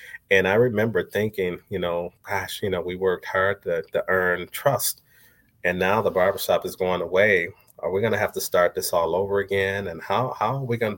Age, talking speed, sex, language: 30-49, 215 wpm, male, English